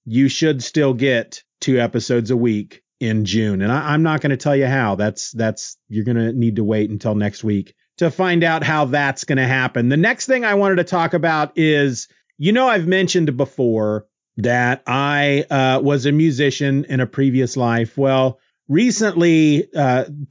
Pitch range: 115-150 Hz